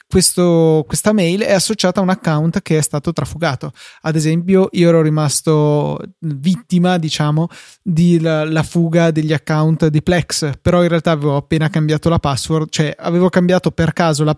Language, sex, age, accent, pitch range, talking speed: Italian, male, 20-39, native, 150-180 Hz, 165 wpm